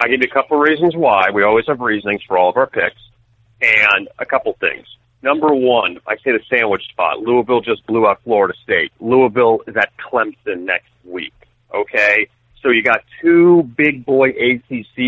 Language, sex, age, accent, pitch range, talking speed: English, male, 40-59, American, 115-145 Hz, 185 wpm